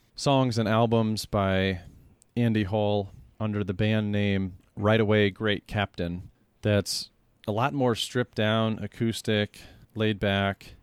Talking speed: 125 wpm